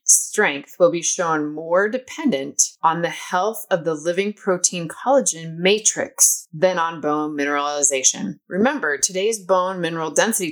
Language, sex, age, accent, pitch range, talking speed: English, female, 20-39, American, 150-195 Hz, 135 wpm